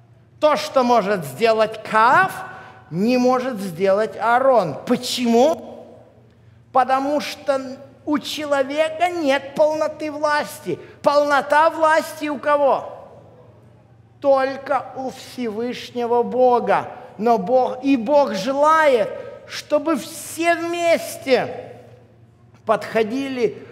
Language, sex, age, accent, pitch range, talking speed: Russian, male, 50-69, native, 170-265 Hz, 85 wpm